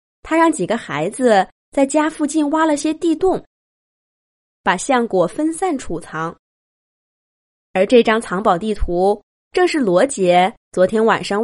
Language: Chinese